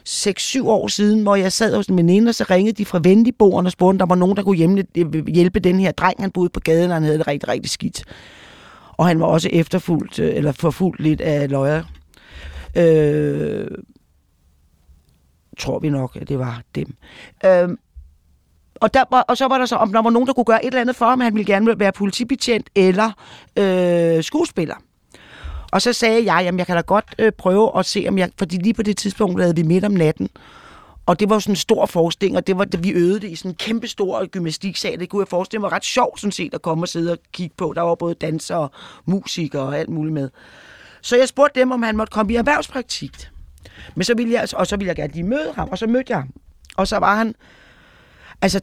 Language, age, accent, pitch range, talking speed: Danish, 30-49, native, 160-220 Hz, 235 wpm